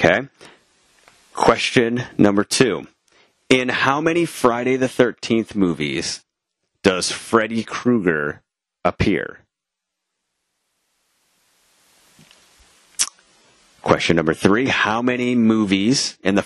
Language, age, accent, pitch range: English, 30-49, American, 90-120 Hz